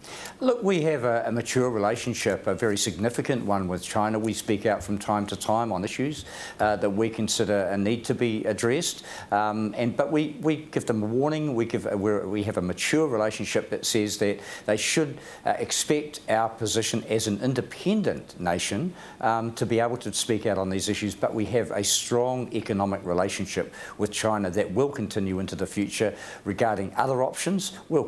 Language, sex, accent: English, male, Australian